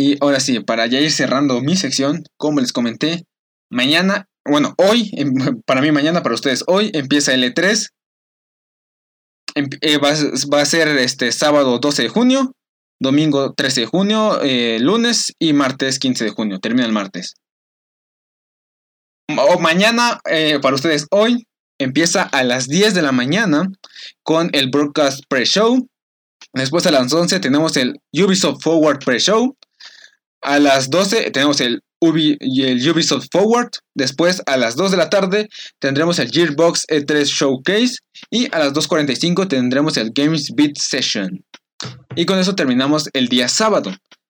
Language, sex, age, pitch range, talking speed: Spanish, male, 20-39, 135-195 Hz, 150 wpm